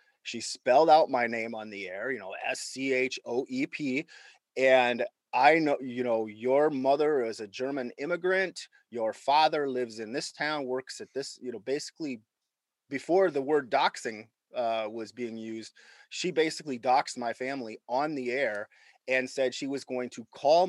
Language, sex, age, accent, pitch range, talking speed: English, male, 30-49, American, 115-150 Hz, 165 wpm